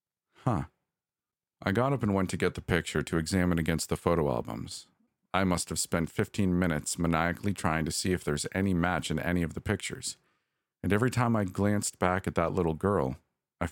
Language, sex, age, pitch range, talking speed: English, male, 40-59, 85-105 Hz, 200 wpm